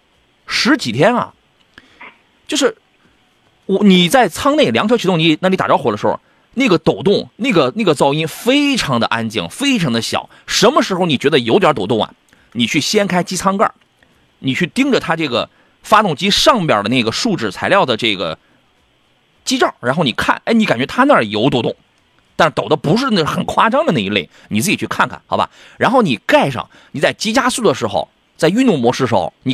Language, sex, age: Chinese, male, 30-49